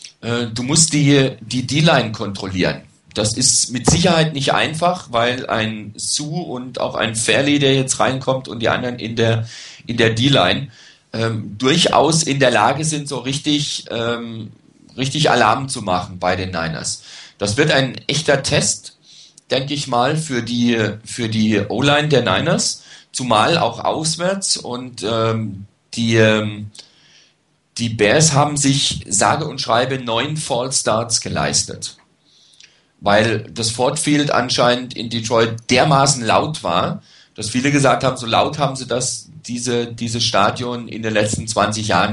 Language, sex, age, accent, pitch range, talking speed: German, male, 40-59, German, 110-140 Hz, 140 wpm